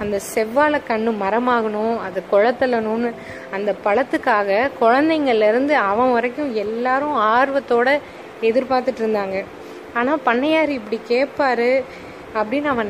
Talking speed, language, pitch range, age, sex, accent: 100 wpm, Tamil, 220-270 Hz, 20-39, female, native